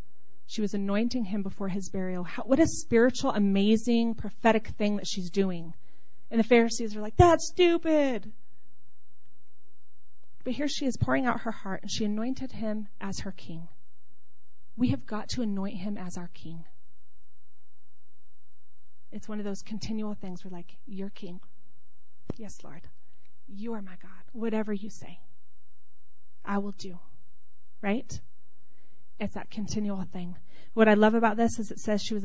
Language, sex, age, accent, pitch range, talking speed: English, female, 30-49, American, 155-225 Hz, 160 wpm